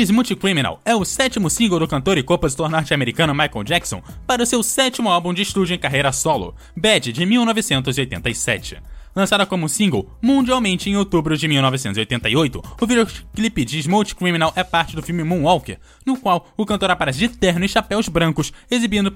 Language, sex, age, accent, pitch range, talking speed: Portuguese, male, 20-39, Brazilian, 140-205 Hz, 170 wpm